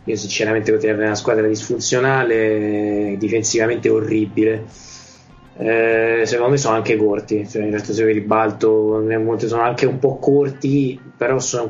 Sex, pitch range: male, 110-125 Hz